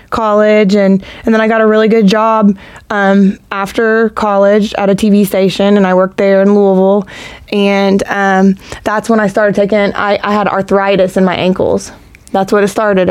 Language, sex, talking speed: English, female, 190 wpm